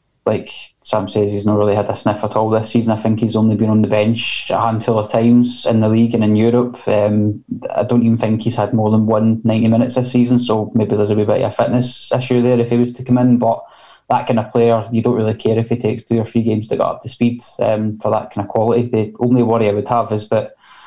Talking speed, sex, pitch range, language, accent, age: 280 wpm, male, 110-120 Hz, English, British, 10-29